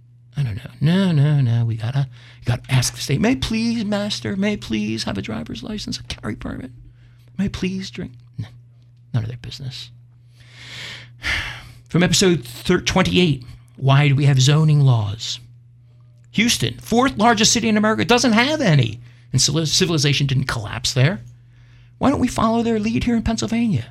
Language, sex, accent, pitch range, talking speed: English, male, American, 120-170 Hz, 160 wpm